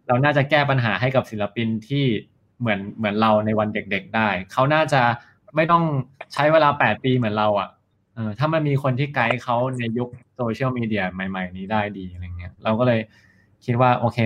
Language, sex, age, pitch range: Thai, male, 20-39, 105-125 Hz